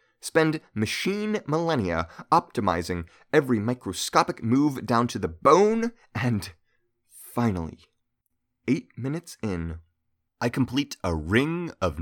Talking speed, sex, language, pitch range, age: 105 wpm, male, English, 90-125 Hz, 30-49